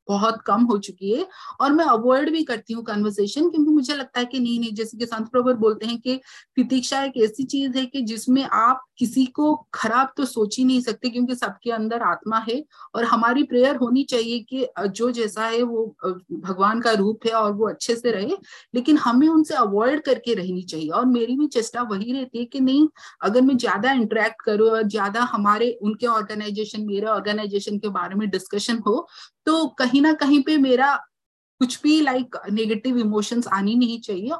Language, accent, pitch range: Hindi, native, 220-275 Hz